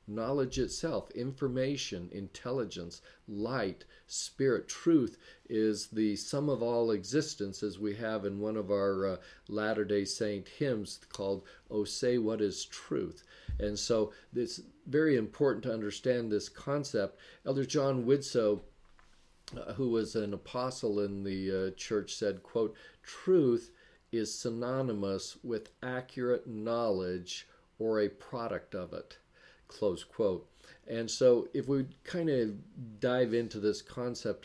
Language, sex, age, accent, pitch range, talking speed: English, male, 50-69, American, 100-125 Hz, 135 wpm